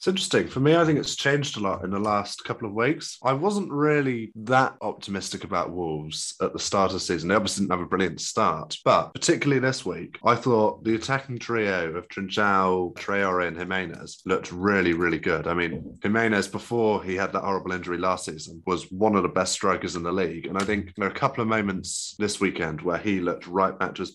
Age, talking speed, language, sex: 20-39, 230 wpm, English, male